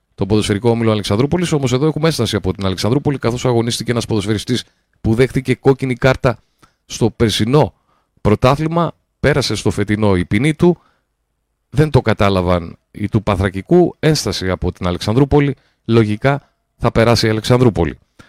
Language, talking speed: Greek, 140 wpm